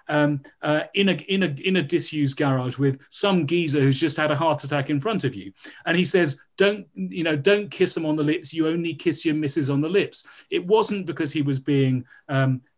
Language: English